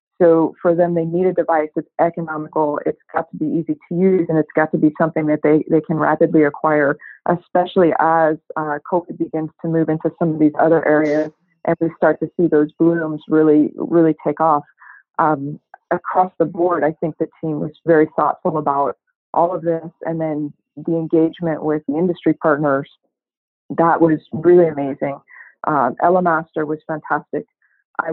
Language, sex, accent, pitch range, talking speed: English, female, American, 155-170 Hz, 180 wpm